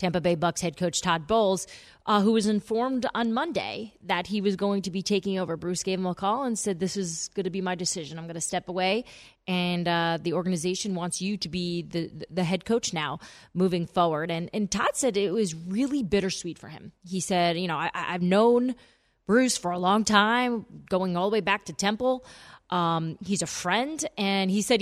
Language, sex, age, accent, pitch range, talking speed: English, female, 20-39, American, 175-220 Hz, 220 wpm